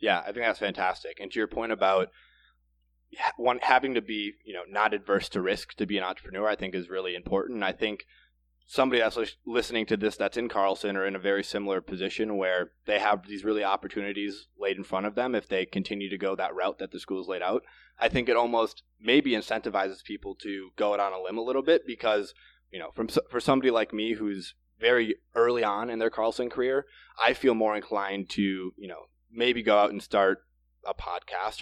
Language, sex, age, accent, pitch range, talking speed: English, male, 20-39, American, 95-115 Hz, 215 wpm